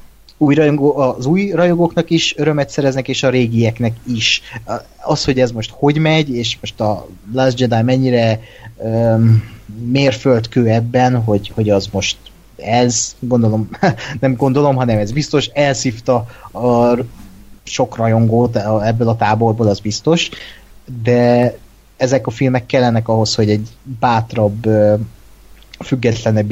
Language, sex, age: Hungarian, male, 30-49